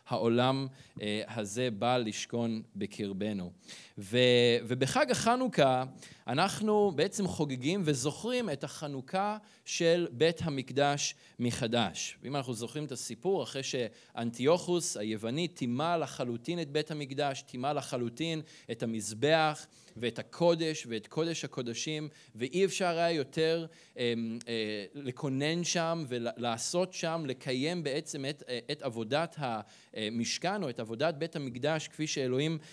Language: Hebrew